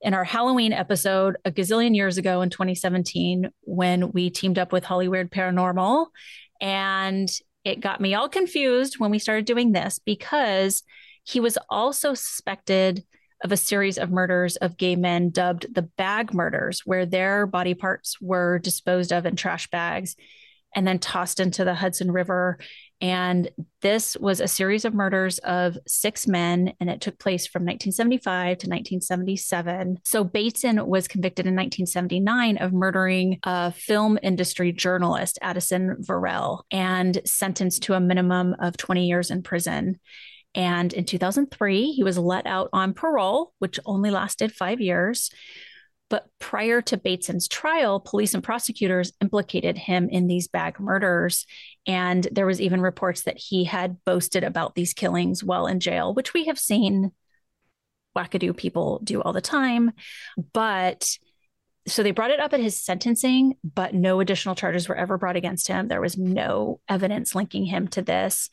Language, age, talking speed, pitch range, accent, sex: English, 30-49, 160 wpm, 180-205 Hz, American, female